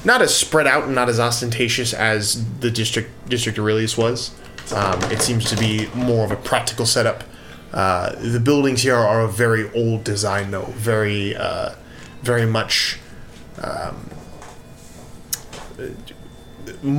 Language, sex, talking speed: English, male, 140 wpm